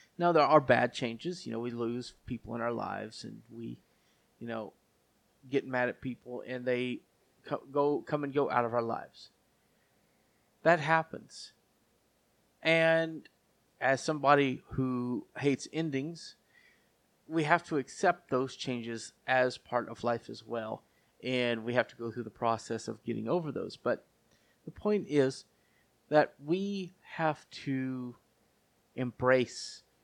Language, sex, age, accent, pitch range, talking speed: English, male, 30-49, American, 125-160 Hz, 140 wpm